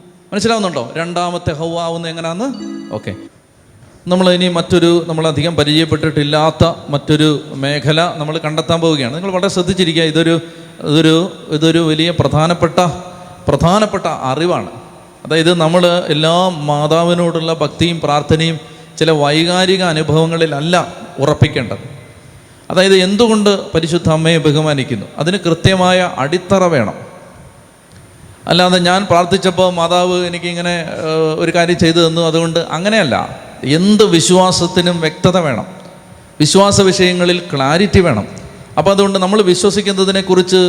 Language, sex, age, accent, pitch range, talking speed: Malayalam, male, 30-49, native, 155-180 Hz, 100 wpm